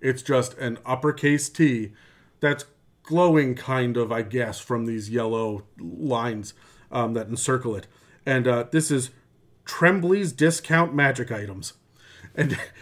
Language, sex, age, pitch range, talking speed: English, male, 40-59, 125-155 Hz, 130 wpm